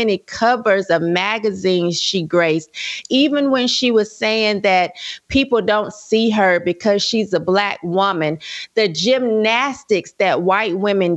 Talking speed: 135 wpm